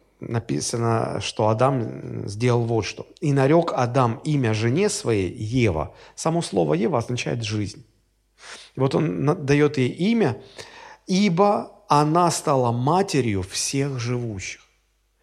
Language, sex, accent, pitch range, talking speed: Russian, male, native, 120-170 Hz, 115 wpm